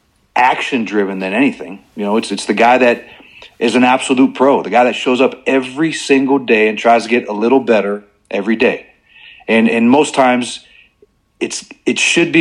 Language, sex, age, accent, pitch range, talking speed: English, male, 40-59, American, 105-140 Hz, 190 wpm